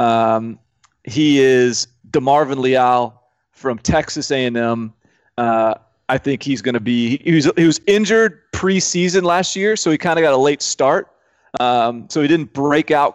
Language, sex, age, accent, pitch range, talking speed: English, male, 30-49, American, 120-150 Hz, 170 wpm